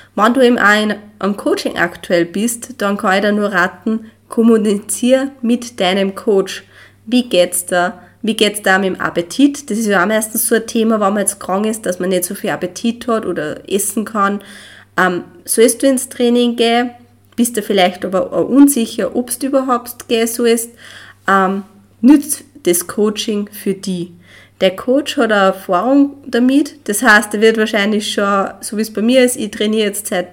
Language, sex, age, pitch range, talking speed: German, female, 20-39, 195-230 Hz, 190 wpm